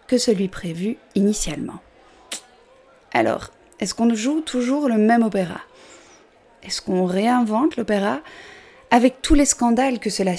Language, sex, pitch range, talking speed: French, female, 190-255 Hz, 125 wpm